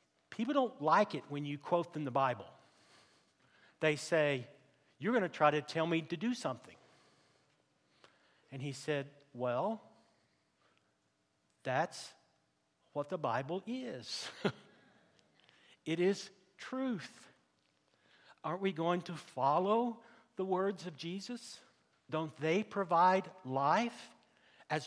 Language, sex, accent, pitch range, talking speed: English, male, American, 140-190 Hz, 115 wpm